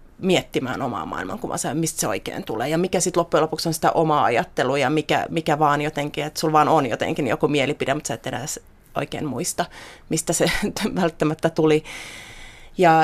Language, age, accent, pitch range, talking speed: Finnish, 30-49, native, 155-180 Hz, 180 wpm